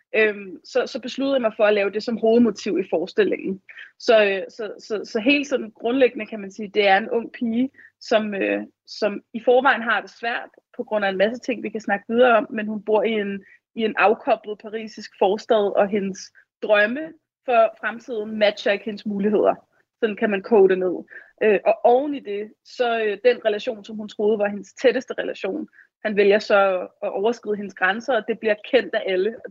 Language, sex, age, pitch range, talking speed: Danish, female, 30-49, 205-235 Hz, 210 wpm